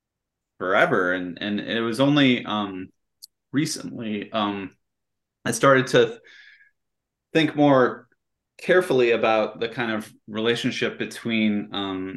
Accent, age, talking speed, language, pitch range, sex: American, 30-49, 110 wpm, English, 100-125 Hz, male